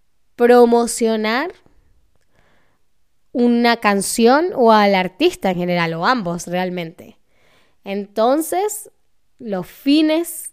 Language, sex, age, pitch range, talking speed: Spanish, female, 10-29, 200-265 Hz, 80 wpm